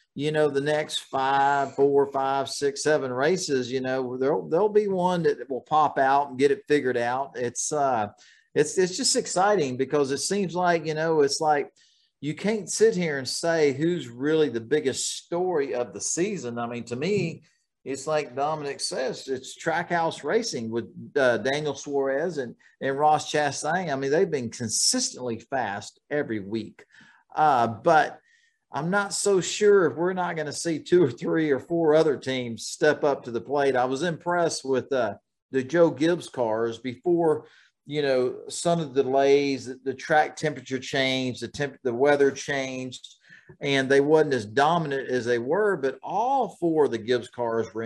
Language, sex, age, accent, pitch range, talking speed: English, male, 50-69, American, 130-170 Hz, 185 wpm